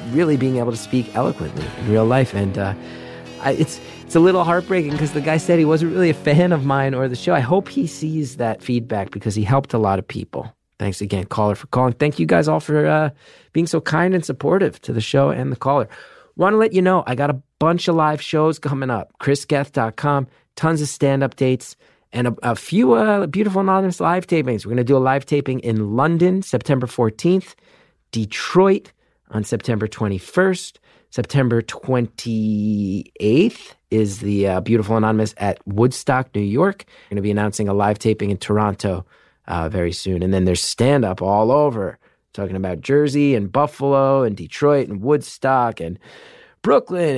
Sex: male